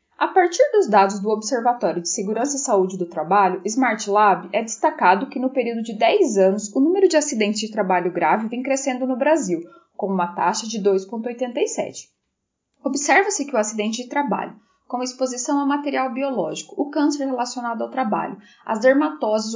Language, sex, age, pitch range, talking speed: Portuguese, female, 10-29, 195-275 Hz, 170 wpm